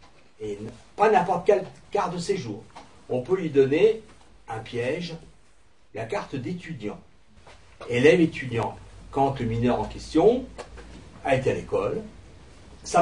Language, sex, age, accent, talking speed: French, male, 60-79, French, 130 wpm